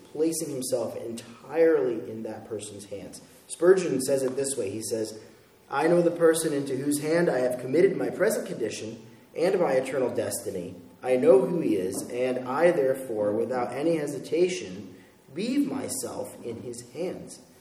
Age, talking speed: 30-49, 160 wpm